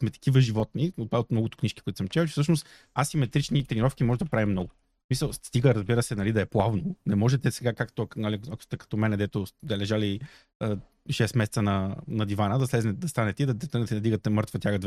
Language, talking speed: Bulgarian, 210 wpm